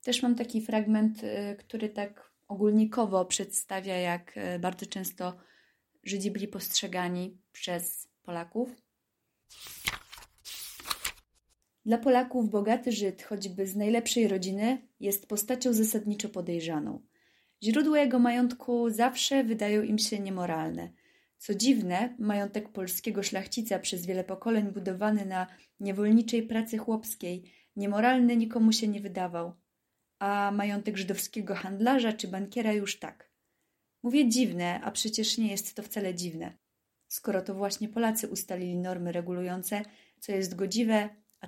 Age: 20-39